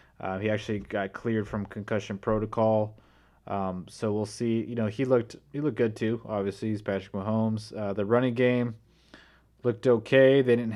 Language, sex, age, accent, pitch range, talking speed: English, male, 20-39, American, 100-120 Hz, 180 wpm